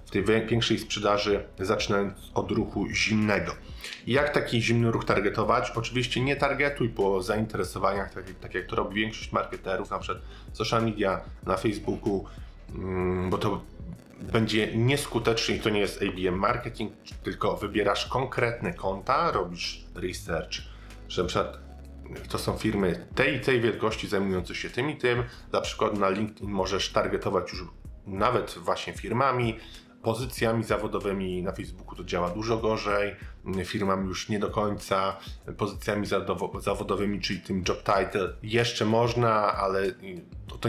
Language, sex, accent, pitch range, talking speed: Polish, male, native, 95-115 Hz, 140 wpm